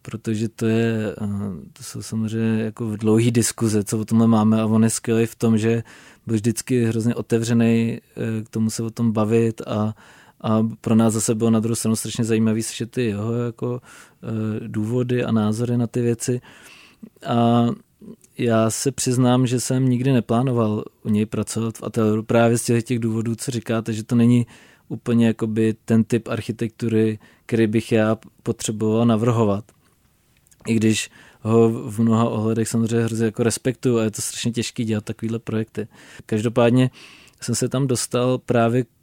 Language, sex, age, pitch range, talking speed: Czech, male, 20-39, 110-120 Hz, 165 wpm